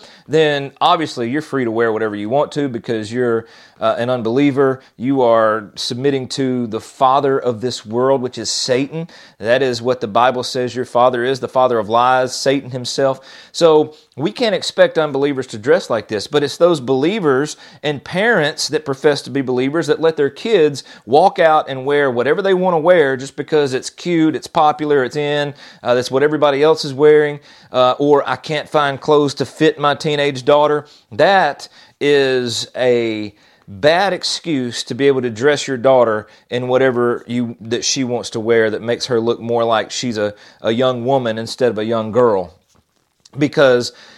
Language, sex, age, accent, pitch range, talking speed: English, male, 40-59, American, 120-145 Hz, 185 wpm